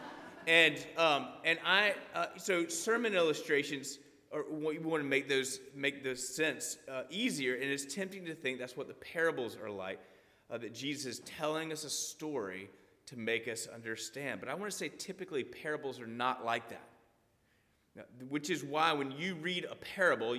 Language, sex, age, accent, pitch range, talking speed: English, male, 30-49, American, 135-205 Hz, 180 wpm